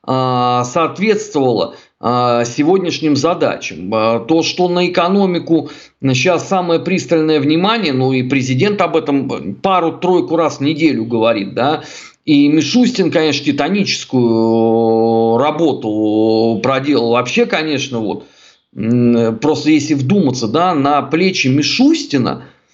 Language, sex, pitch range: Russian, male, 125-170 Hz